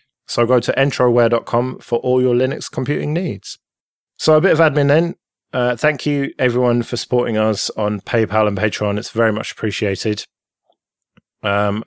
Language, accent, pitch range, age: English, British, 105-120 Hz, 20-39